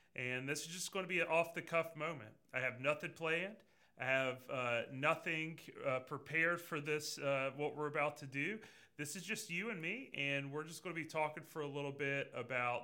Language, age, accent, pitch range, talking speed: English, 30-49, American, 135-175 Hz, 215 wpm